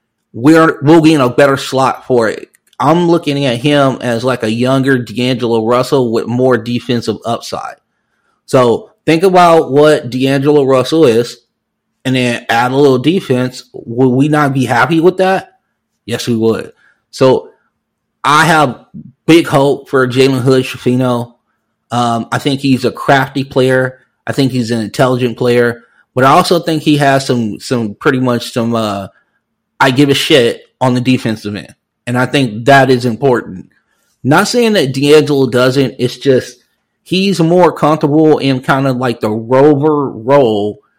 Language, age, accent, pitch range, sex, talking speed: English, 30-49, American, 120-145 Hz, male, 160 wpm